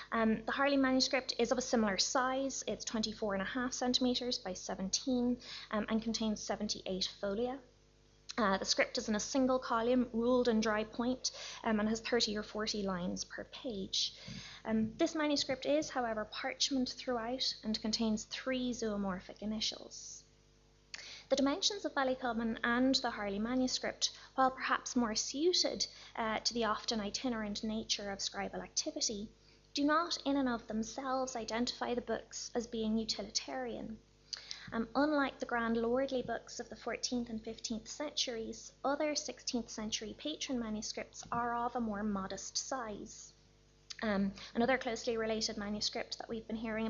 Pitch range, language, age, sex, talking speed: 215-255 Hz, English, 20-39, female, 150 wpm